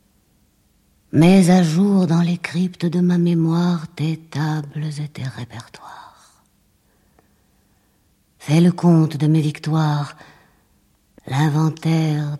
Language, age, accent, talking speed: French, 50-69, French, 100 wpm